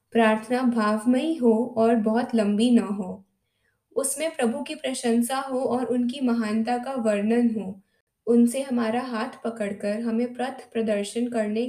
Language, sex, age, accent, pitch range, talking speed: Hindi, female, 20-39, native, 215-250 Hz, 140 wpm